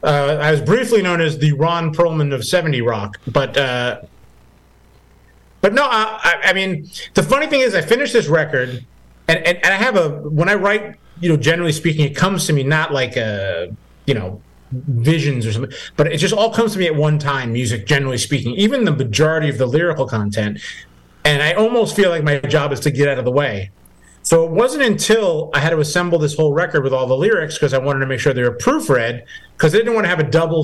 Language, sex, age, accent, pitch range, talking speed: English, male, 30-49, American, 130-170 Hz, 230 wpm